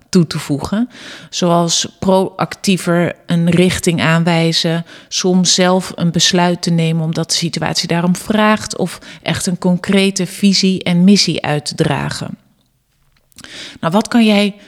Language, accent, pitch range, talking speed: Dutch, Dutch, 170-210 Hz, 130 wpm